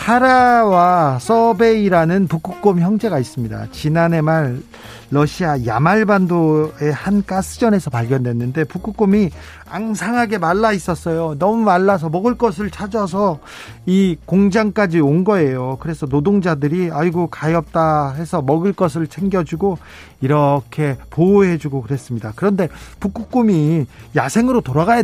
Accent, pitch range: native, 140-200 Hz